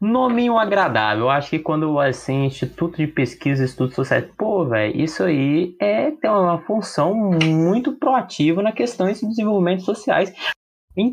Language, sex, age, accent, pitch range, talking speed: Portuguese, male, 20-39, Brazilian, 145-210 Hz, 160 wpm